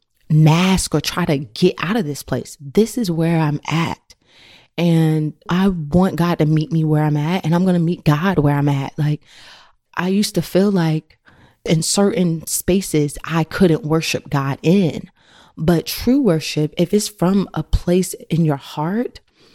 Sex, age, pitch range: female, 20-39, 155-195 Hz